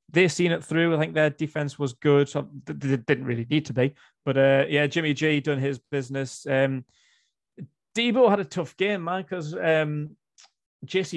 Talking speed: 175 wpm